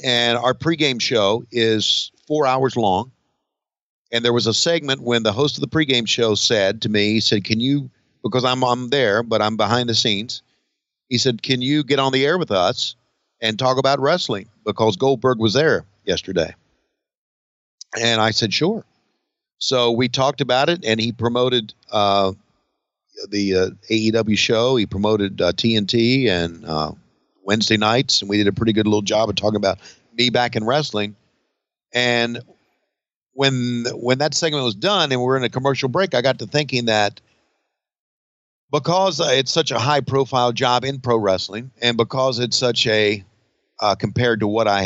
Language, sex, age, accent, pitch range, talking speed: English, male, 50-69, American, 110-135 Hz, 180 wpm